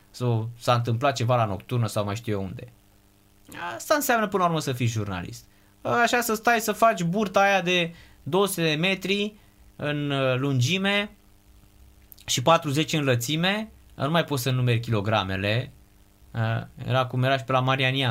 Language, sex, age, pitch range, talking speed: Romanian, male, 20-39, 105-165 Hz, 160 wpm